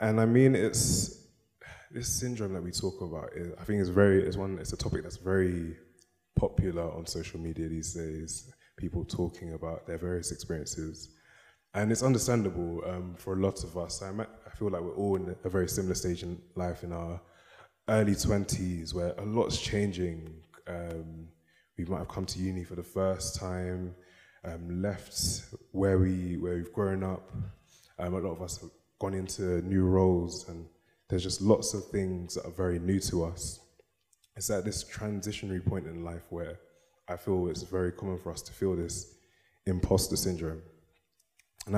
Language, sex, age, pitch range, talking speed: English, male, 20-39, 85-100 Hz, 175 wpm